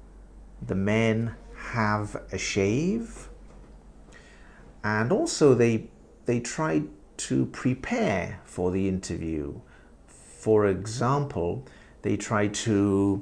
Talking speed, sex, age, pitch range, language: 90 wpm, male, 50-69, 90-120 Hz, English